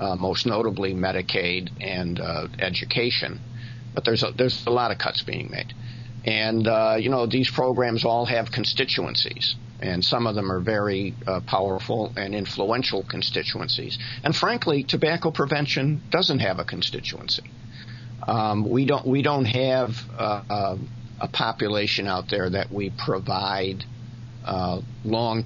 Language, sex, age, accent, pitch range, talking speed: English, male, 50-69, American, 105-125 Hz, 145 wpm